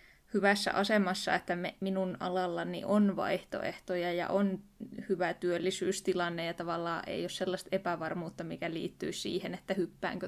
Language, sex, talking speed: Finnish, female, 135 wpm